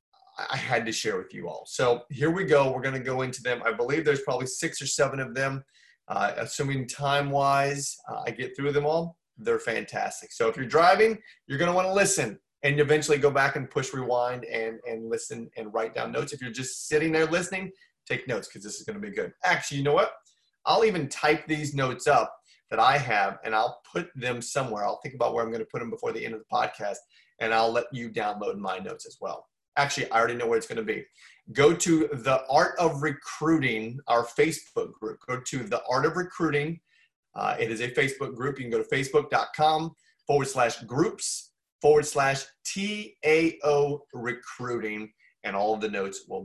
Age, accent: 30-49, American